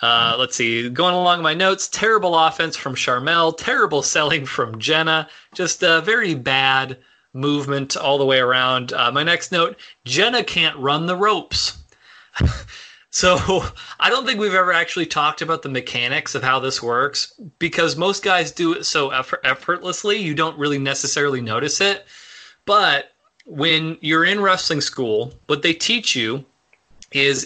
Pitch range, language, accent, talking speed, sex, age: 135-180 Hz, English, American, 155 wpm, male, 20-39